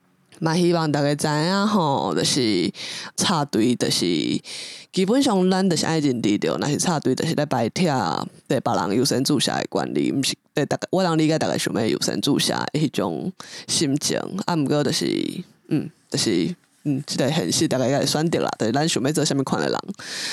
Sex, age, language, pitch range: female, 20-39, English, 140-175 Hz